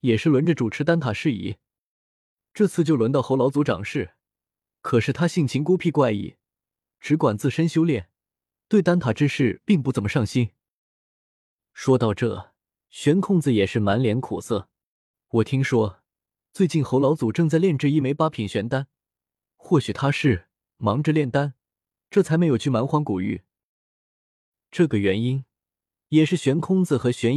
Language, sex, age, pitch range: Chinese, male, 20-39, 115-160 Hz